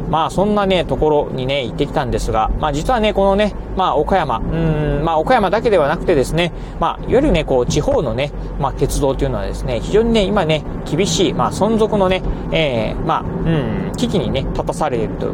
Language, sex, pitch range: Japanese, male, 140-185 Hz